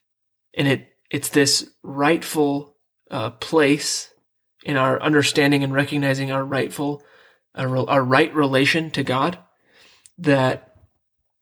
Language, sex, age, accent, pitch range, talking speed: English, male, 20-39, American, 135-150 Hz, 110 wpm